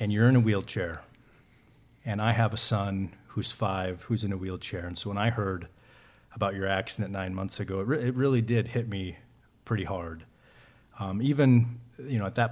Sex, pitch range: male, 100-125 Hz